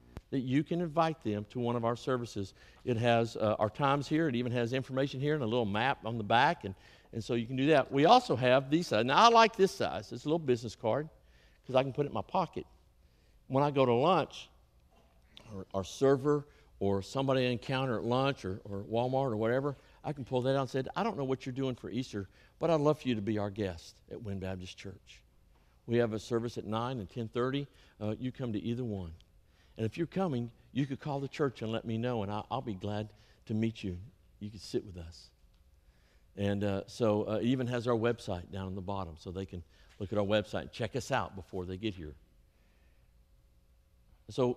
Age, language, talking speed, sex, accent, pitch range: 50-69, English, 235 wpm, male, American, 95-130 Hz